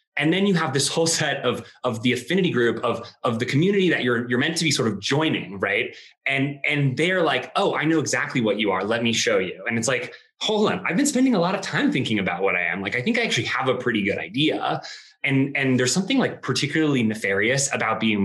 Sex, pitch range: male, 110-145 Hz